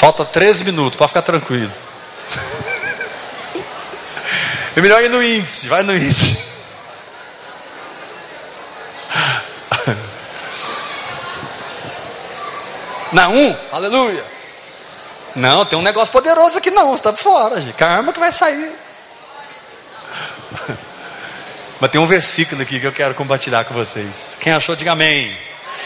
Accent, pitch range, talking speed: Brazilian, 130-190 Hz, 110 wpm